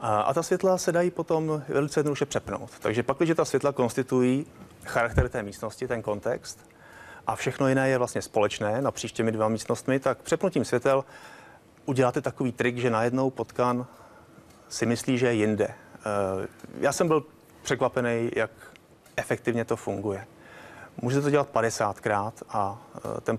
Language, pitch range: Czech, 110-140 Hz